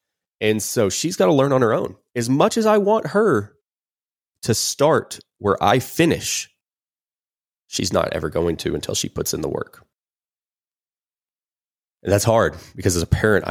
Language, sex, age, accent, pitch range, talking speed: English, male, 30-49, American, 85-115 Hz, 170 wpm